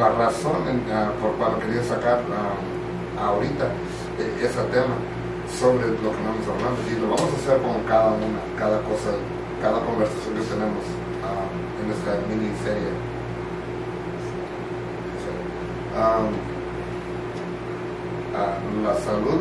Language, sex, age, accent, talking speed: English, male, 30-49, Mexican, 130 wpm